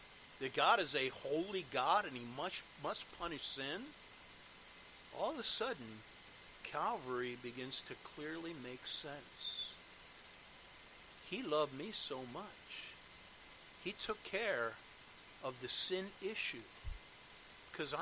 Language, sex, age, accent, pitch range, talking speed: English, male, 50-69, American, 145-195 Hz, 115 wpm